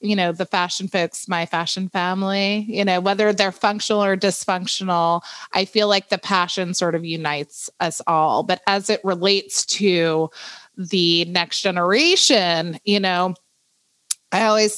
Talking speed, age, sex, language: 150 wpm, 30-49, female, English